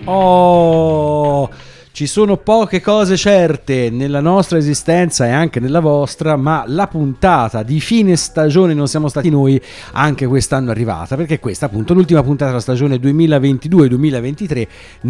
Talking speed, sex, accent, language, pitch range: 140 wpm, male, native, Italian, 115-155 Hz